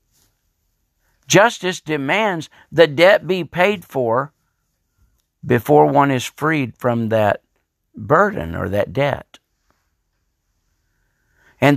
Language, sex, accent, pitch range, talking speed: English, male, American, 115-190 Hz, 90 wpm